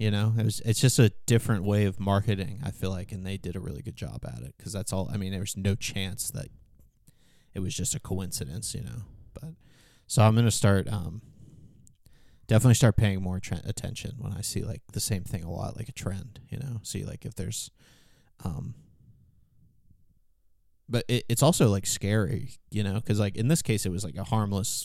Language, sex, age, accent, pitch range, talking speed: English, male, 20-39, American, 95-115 Hz, 215 wpm